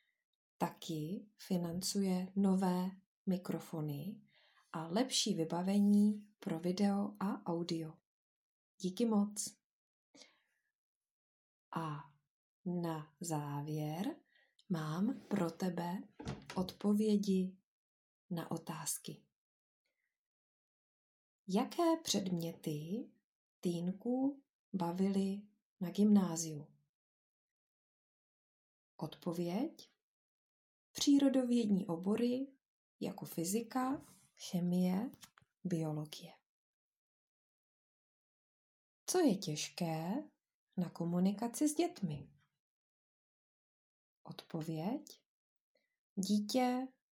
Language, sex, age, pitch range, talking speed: English, female, 20-39, 170-225 Hz, 55 wpm